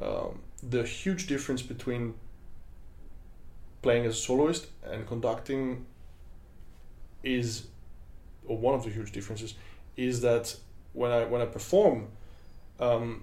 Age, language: 20-39, English